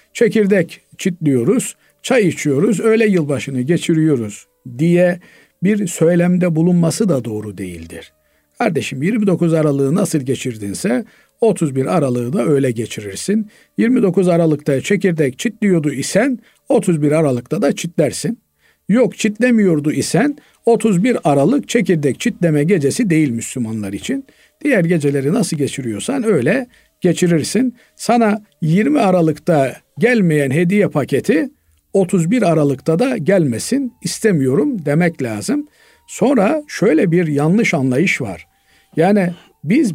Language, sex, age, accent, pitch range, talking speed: Turkish, male, 50-69, native, 145-205 Hz, 105 wpm